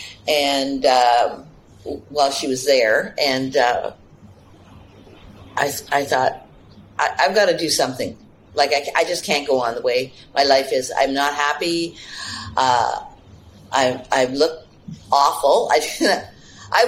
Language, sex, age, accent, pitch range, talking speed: English, female, 50-69, American, 110-170 Hz, 140 wpm